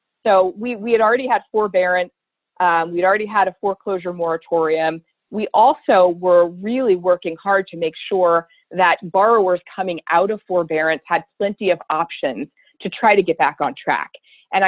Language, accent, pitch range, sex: English, American, 165-200 Hz, female